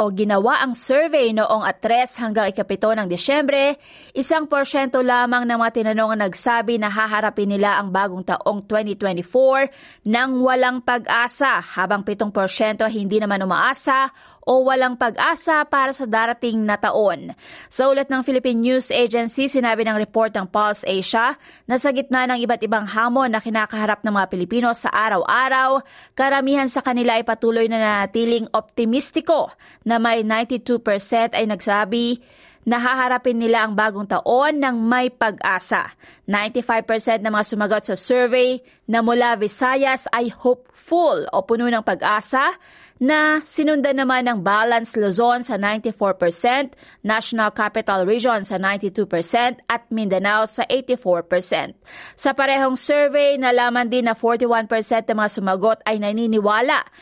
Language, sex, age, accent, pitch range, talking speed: Filipino, female, 20-39, native, 215-255 Hz, 140 wpm